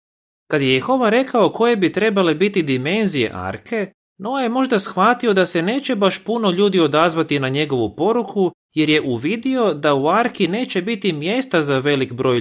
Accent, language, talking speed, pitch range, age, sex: native, Croatian, 175 wpm, 120-205 Hz, 30-49, male